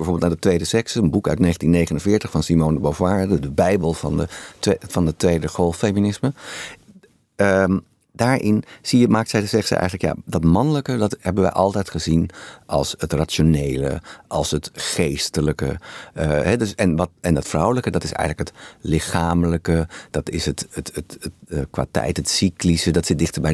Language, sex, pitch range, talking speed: Dutch, male, 80-95 Hz, 185 wpm